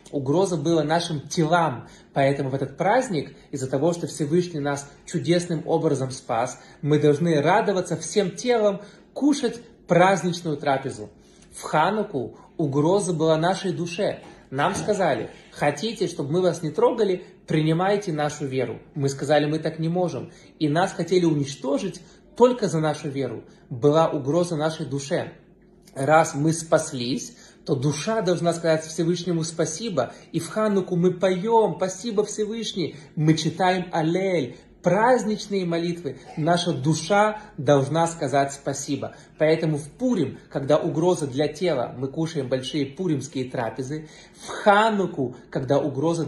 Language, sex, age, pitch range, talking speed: Russian, male, 20-39, 145-185 Hz, 130 wpm